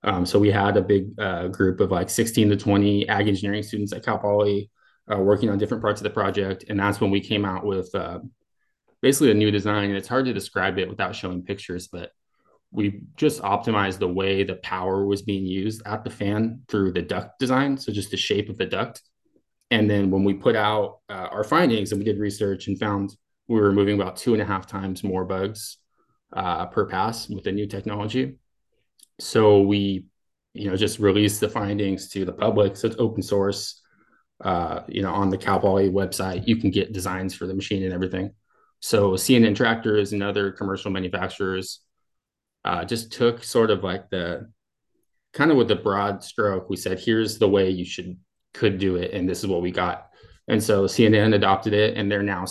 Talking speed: 210 wpm